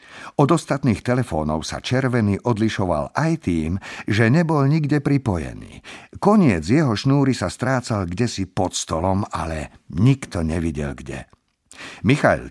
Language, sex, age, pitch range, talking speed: Slovak, male, 50-69, 90-125 Hz, 120 wpm